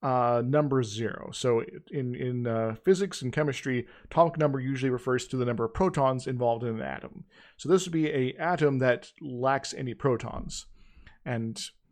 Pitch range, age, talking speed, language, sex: 115-135 Hz, 40-59, 170 wpm, English, male